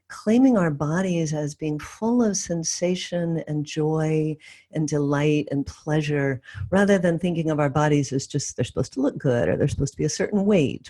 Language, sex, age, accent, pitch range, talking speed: English, female, 50-69, American, 145-185 Hz, 195 wpm